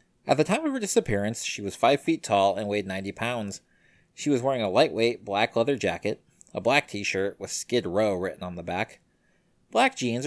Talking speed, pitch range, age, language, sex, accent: 205 wpm, 100-130 Hz, 30-49, English, male, American